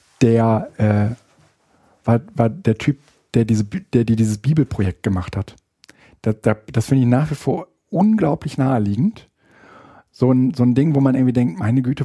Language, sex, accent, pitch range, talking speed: German, male, German, 115-135 Hz, 175 wpm